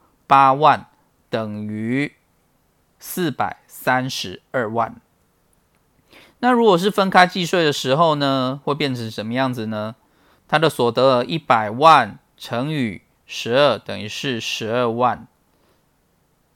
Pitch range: 115-145 Hz